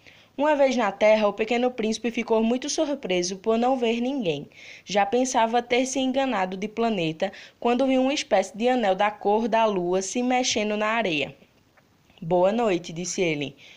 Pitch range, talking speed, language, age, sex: 190-255 Hz, 170 wpm, Portuguese, 20-39, female